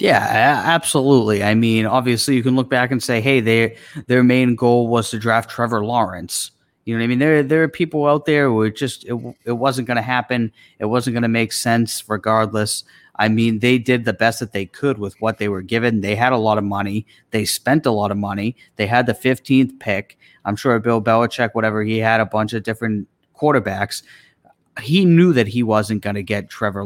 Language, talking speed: English, 215 wpm